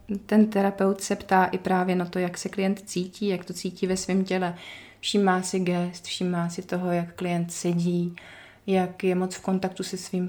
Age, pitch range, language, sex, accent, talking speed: 30-49, 175-195 Hz, Czech, female, native, 205 wpm